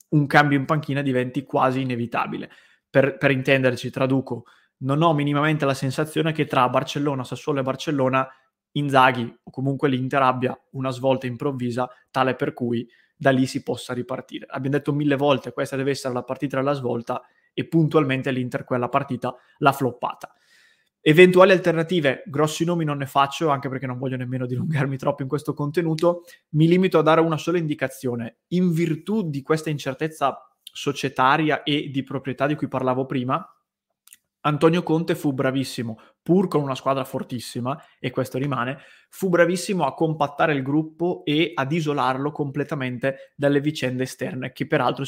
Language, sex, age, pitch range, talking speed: Italian, male, 20-39, 130-155 Hz, 160 wpm